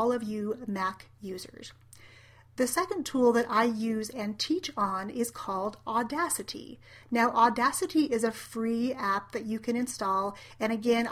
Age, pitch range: 30-49, 215-255 Hz